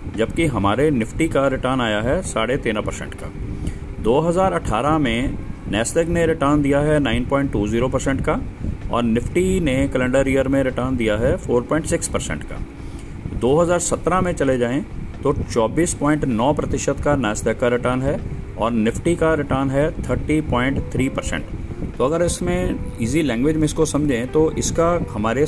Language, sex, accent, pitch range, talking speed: Hindi, male, native, 110-145 Hz, 150 wpm